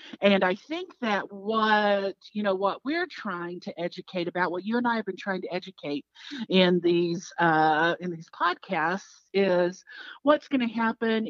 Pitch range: 175-220 Hz